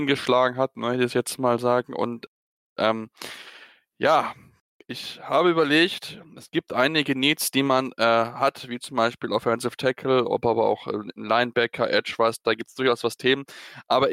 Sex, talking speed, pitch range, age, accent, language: male, 170 wpm, 115-130 Hz, 10-29, German, German